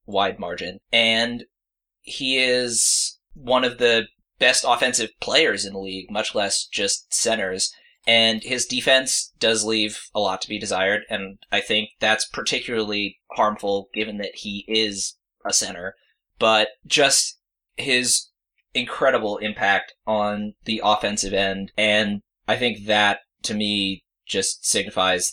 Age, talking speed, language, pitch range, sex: 20-39, 135 wpm, English, 100-115 Hz, male